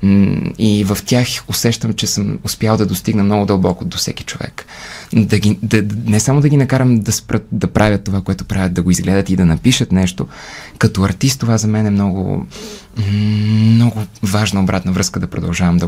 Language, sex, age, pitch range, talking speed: Bulgarian, male, 20-39, 95-120 Hz, 190 wpm